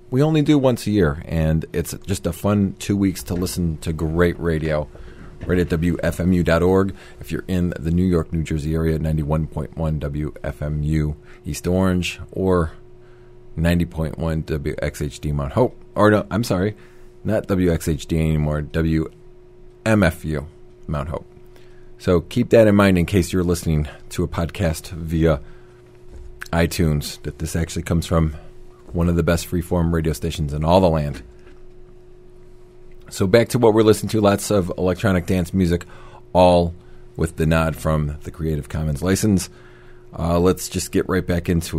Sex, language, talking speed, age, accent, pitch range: male, English, 155 wpm, 40-59, American, 80-100 Hz